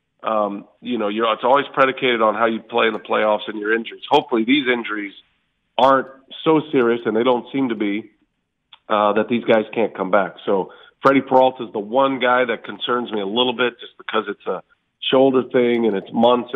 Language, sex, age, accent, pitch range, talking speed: English, male, 40-59, American, 110-130 Hz, 210 wpm